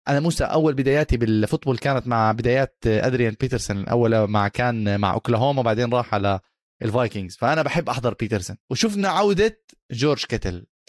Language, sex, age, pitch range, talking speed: Arabic, male, 20-39, 110-140 Hz, 150 wpm